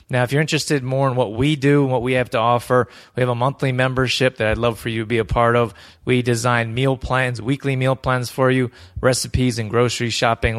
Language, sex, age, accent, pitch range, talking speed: English, male, 20-39, American, 115-130 Hz, 245 wpm